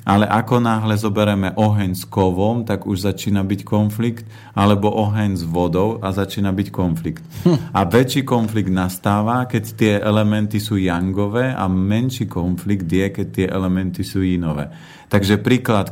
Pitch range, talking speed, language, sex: 95-110 Hz, 150 wpm, Slovak, male